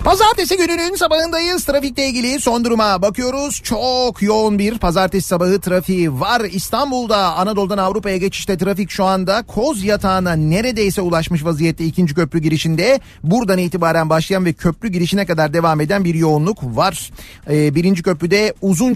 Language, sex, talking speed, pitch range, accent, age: Turkish, male, 140 wpm, 155-195 Hz, native, 40-59